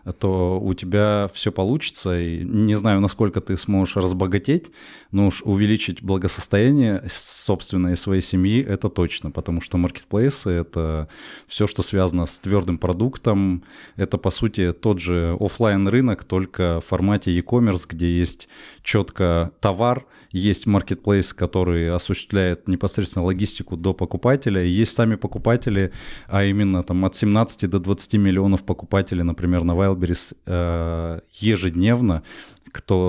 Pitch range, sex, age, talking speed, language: 90-105 Hz, male, 20-39, 130 wpm, Russian